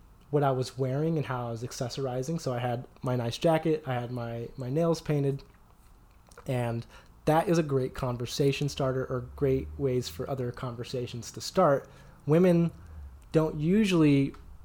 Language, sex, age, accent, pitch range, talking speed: English, male, 20-39, American, 125-155 Hz, 160 wpm